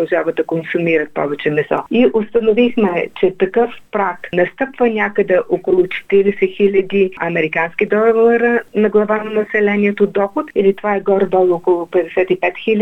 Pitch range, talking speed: 175-215 Hz, 125 wpm